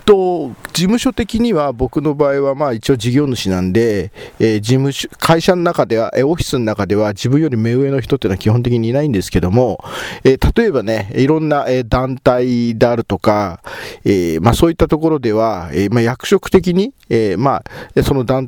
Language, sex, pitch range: Japanese, male, 110-140 Hz